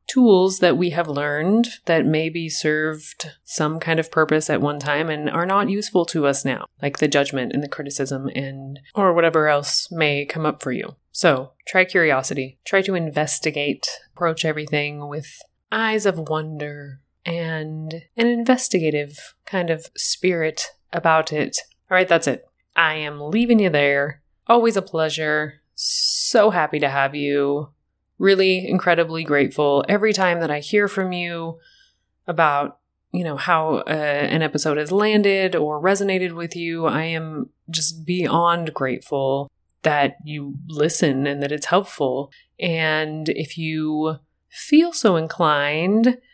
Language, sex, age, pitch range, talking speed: English, female, 30-49, 150-185 Hz, 150 wpm